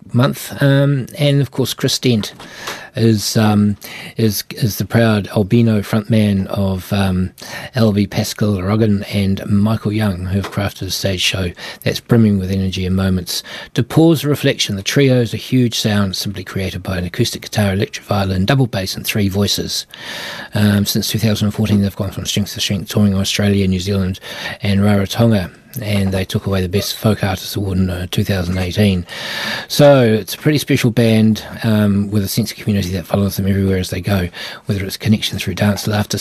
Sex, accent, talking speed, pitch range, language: male, Australian, 180 wpm, 100-115 Hz, English